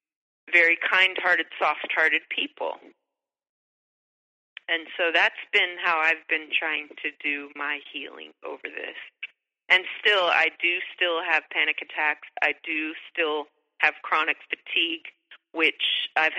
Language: English